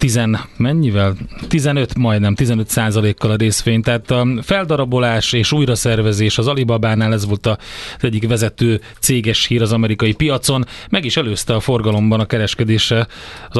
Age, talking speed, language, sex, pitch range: 30-49, 155 wpm, Hungarian, male, 110-130 Hz